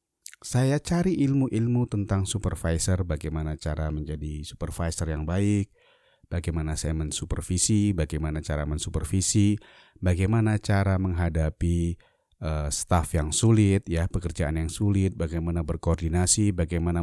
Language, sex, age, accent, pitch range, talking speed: Indonesian, male, 30-49, native, 85-140 Hz, 110 wpm